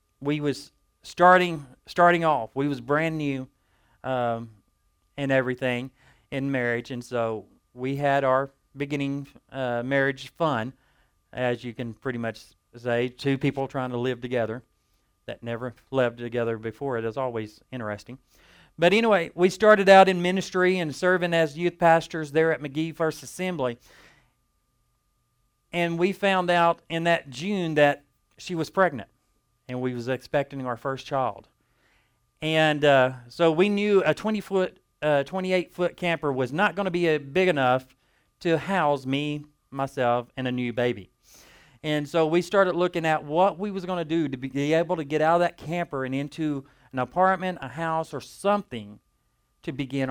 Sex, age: male, 40-59